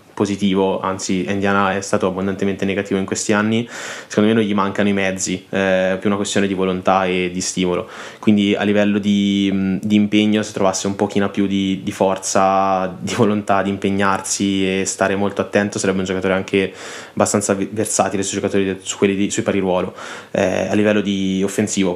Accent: native